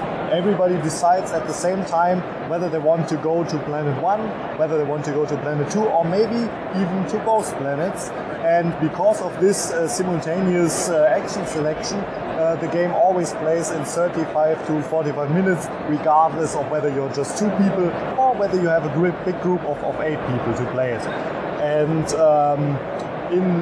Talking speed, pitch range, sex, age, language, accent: 175 wpm, 150-180 Hz, male, 20-39, English, German